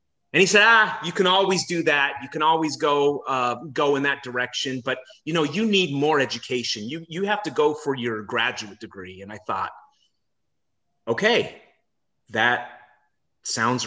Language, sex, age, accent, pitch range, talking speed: English, male, 30-49, American, 120-155 Hz, 175 wpm